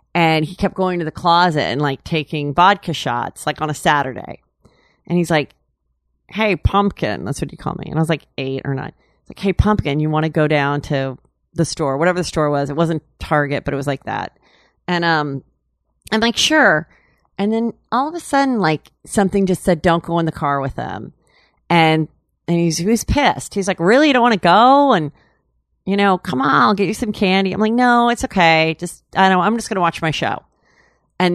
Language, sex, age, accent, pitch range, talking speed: English, female, 40-59, American, 145-185 Hz, 225 wpm